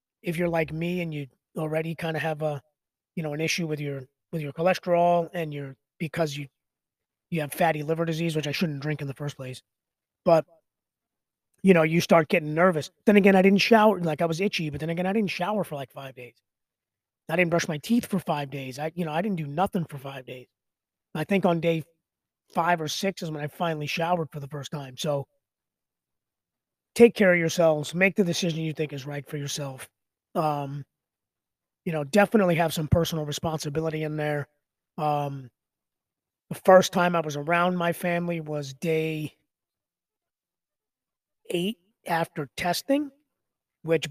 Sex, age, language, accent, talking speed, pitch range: male, 30-49, English, American, 185 wpm, 145-175 Hz